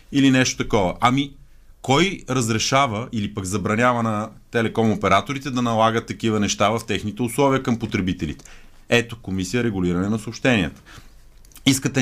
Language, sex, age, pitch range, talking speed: Bulgarian, male, 30-49, 105-135 Hz, 135 wpm